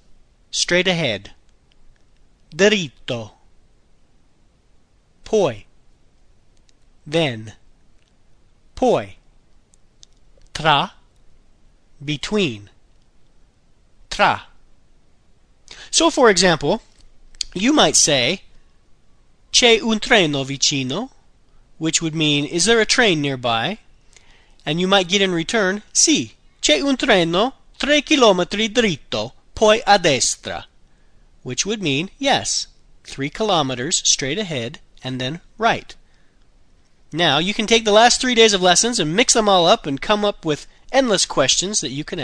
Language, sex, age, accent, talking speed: Italian, male, 40-59, American, 110 wpm